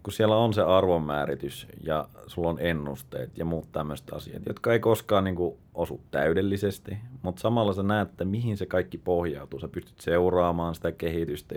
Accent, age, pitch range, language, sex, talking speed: native, 30-49, 75-95 Hz, Finnish, male, 165 wpm